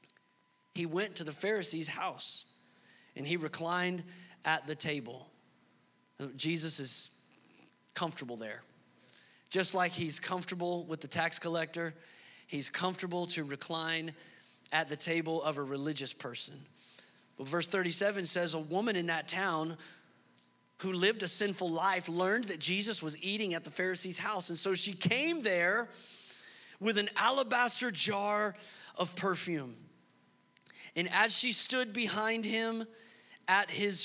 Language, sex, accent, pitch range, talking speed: English, male, American, 155-200 Hz, 135 wpm